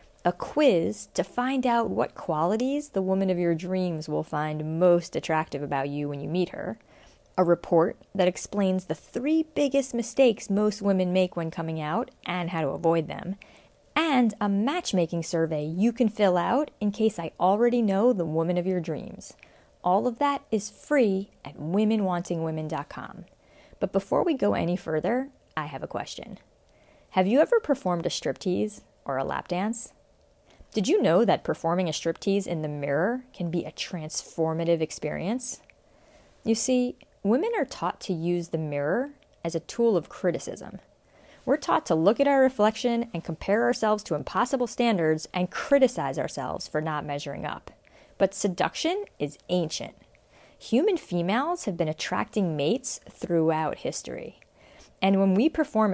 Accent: American